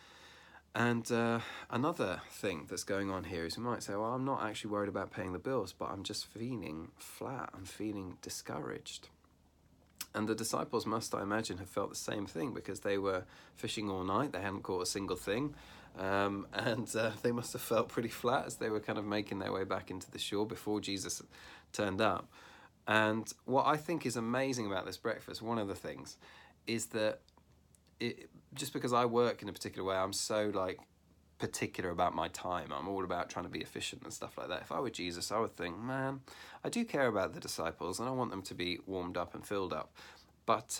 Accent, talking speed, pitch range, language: British, 215 wpm, 90-115 Hz, English